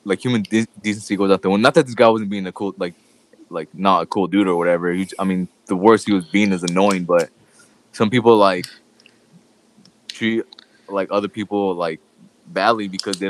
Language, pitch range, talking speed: English, 90-105 Hz, 210 wpm